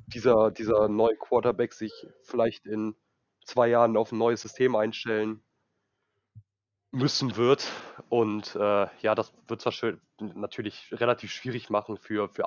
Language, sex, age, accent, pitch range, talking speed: German, male, 20-39, German, 105-120 Hz, 140 wpm